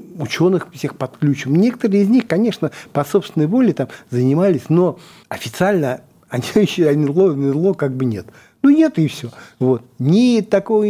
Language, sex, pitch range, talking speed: Russian, male, 125-175 Hz, 145 wpm